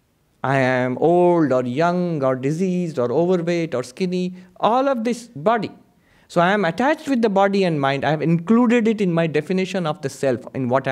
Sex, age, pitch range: male, 50-69, 130-180 Hz